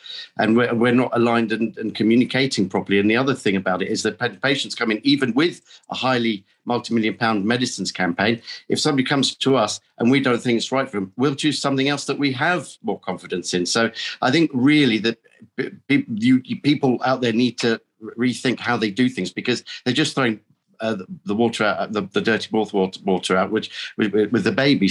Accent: British